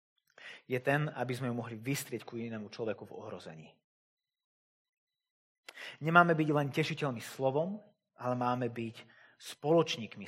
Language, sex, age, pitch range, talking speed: Slovak, male, 30-49, 125-195 Hz, 125 wpm